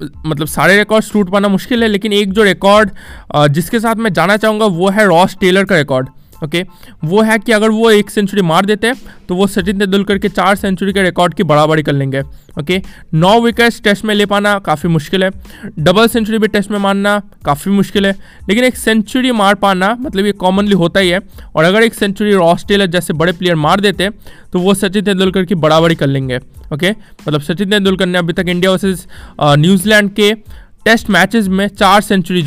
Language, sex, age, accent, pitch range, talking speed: Hindi, male, 20-39, native, 170-210 Hz, 205 wpm